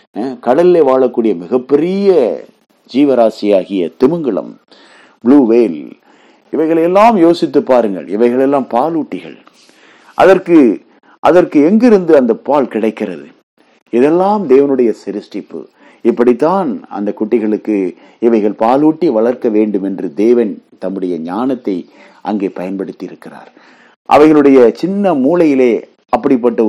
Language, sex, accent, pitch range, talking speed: Tamil, male, native, 110-170 Hz, 90 wpm